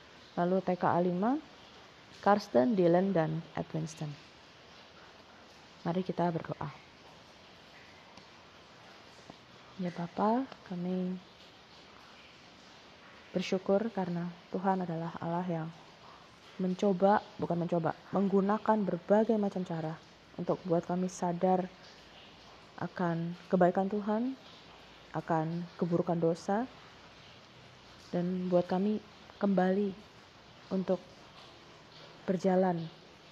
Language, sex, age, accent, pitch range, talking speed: Indonesian, female, 20-39, native, 170-195 Hz, 75 wpm